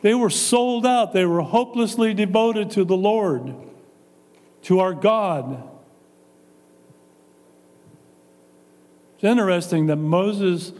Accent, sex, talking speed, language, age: American, male, 100 wpm, English, 50-69